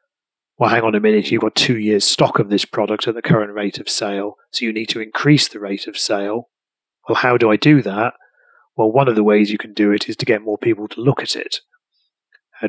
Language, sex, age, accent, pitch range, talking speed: English, male, 30-49, British, 110-125 Hz, 250 wpm